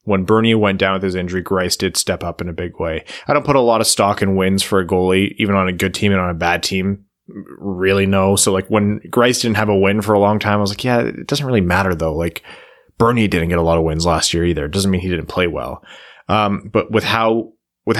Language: English